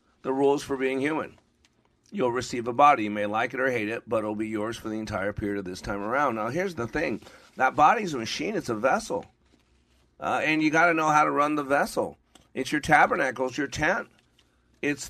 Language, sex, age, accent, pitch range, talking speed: English, male, 40-59, American, 115-145 Hz, 225 wpm